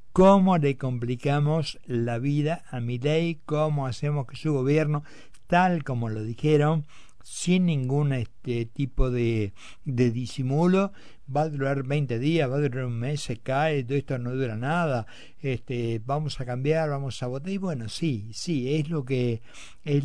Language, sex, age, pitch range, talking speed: Spanish, male, 60-79, 125-155 Hz, 170 wpm